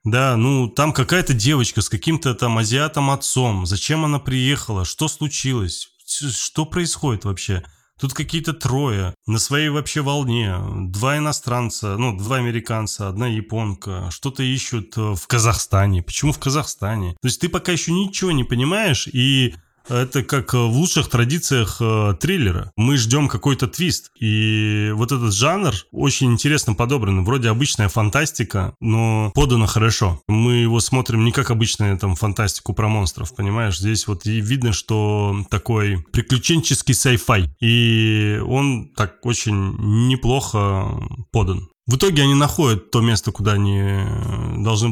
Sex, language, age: male, Russian, 20-39